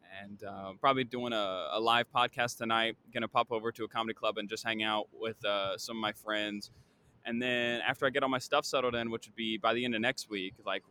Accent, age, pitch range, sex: American, 20-39, 110-130 Hz, male